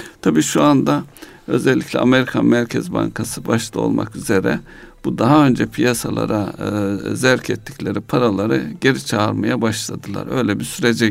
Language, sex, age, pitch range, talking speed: Turkish, male, 60-79, 105-135 Hz, 130 wpm